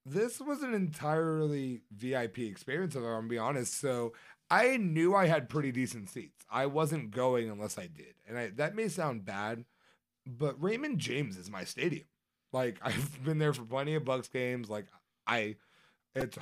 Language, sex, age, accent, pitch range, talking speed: English, male, 30-49, American, 115-160 Hz, 180 wpm